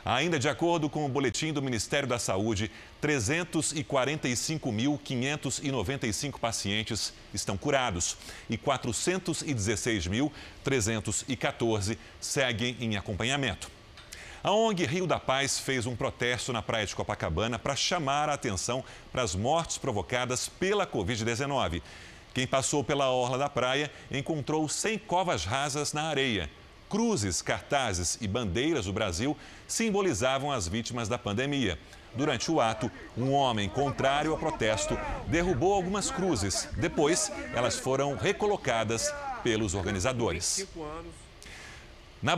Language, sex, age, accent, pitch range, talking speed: Portuguese, male, 40-59, Brazilian, 110-150 Hz, 115 wpm